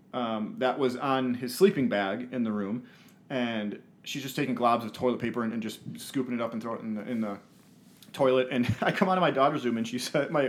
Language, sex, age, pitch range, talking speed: English, male, 30-49, 120-150 Hz, 250 wpm